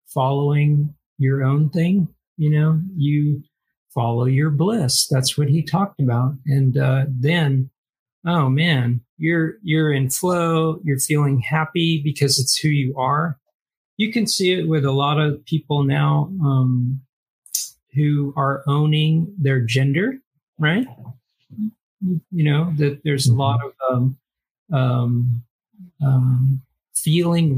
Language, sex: English, male